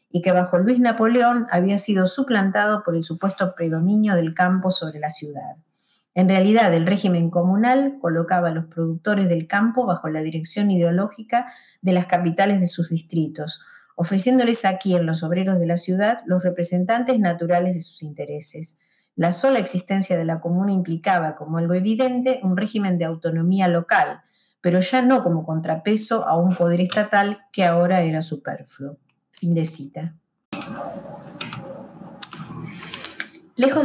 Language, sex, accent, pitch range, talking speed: Spanish, female, Argentinian, 170-210 Hz, 145 wpm